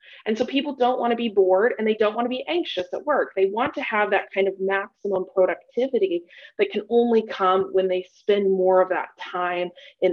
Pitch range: 185-250 Hz